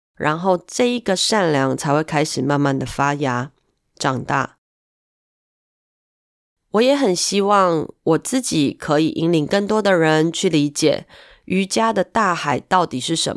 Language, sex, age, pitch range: Chinese, female, 30-49, 145-190 Hz